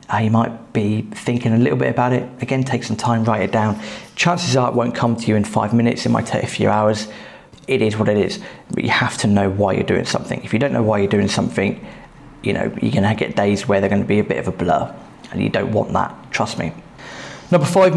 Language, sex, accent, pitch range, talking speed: English, male, British, 110-125 Hz, 265 wpm